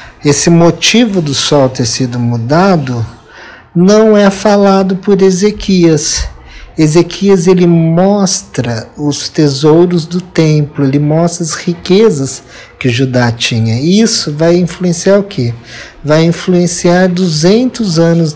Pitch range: 150-195 Hz